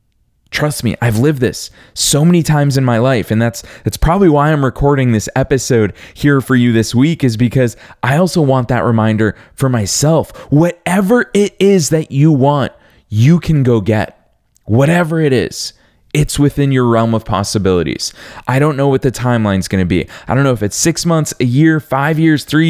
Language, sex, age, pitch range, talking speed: English, male, 20-39, 115-155 Hz, 195 wpm